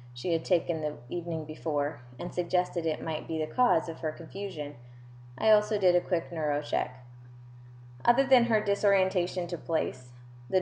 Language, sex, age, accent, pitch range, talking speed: English, female, 20-39, American, 125-175 Hz, 170 wpm